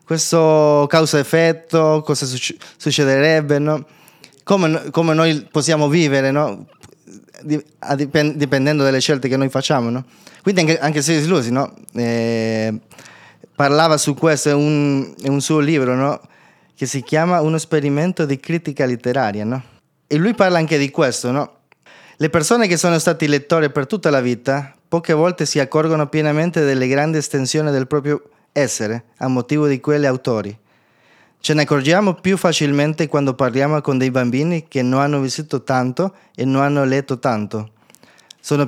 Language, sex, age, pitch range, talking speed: Italian, male, 20-39, 135-160 Hz, 150 wpm